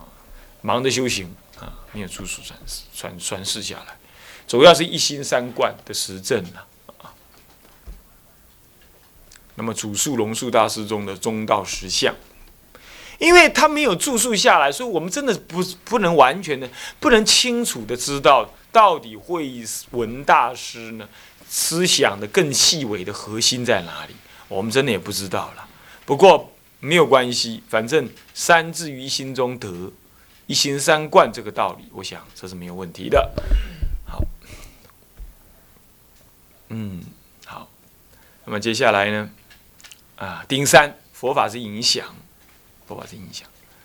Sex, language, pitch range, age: male, Chinese, 100-160 Hz, 30-49